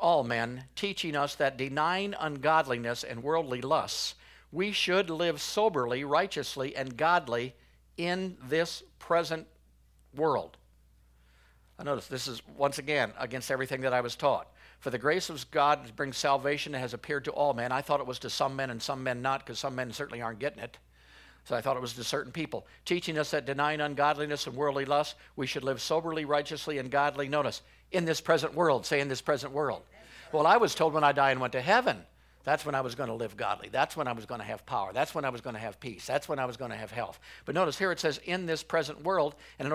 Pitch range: 125-155 Hz